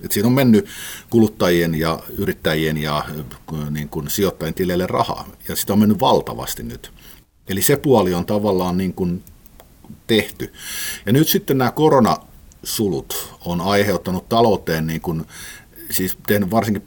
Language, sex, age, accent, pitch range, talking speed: Finnish, male, 50-69, native, 90-115 Hz, 135 wpm